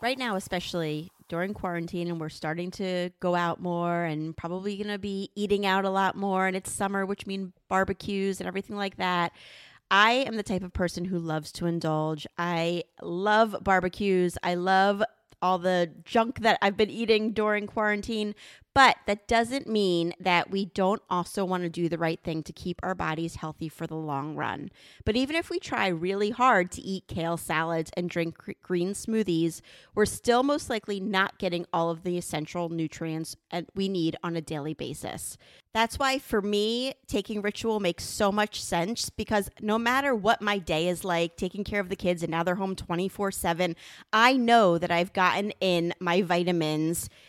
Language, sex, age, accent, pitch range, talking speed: English, female, 30-49, American, 175-210 Hz, 185 wpm